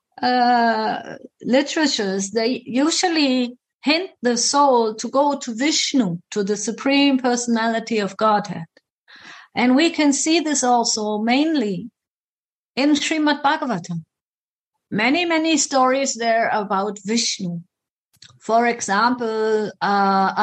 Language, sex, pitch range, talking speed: English, female, 220-275 Hz, 105 wpm